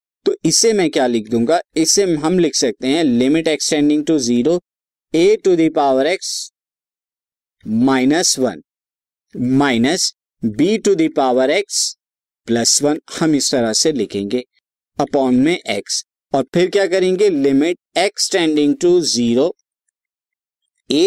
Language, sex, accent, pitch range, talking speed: Hindi, male, native, 125-180 Hz, 130 wpm